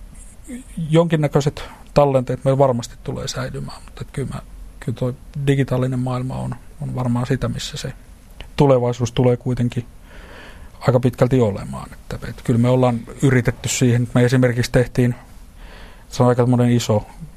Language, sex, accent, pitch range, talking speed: Finnish, male, native, 105-125 Hz, 135 wpm